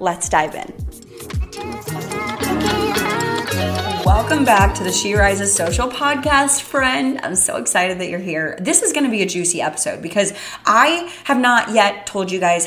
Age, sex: 20-39, female